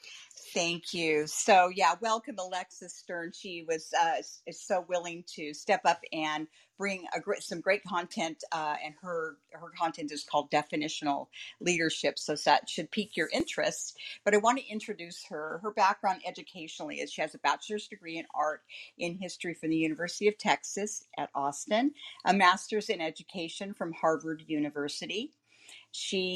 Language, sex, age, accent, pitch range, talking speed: English, female, 50-69, American, 160-210 Hz, 155 wpm